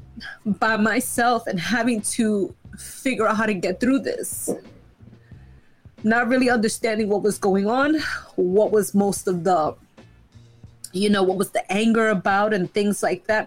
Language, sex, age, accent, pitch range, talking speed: English, female, 20-39, American, 190-235 Hz, 155 wpm